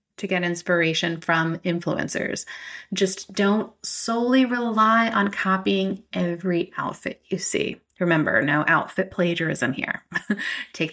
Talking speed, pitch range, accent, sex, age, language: 115 wpm, 180-220 Hz, American, female, 30-49, English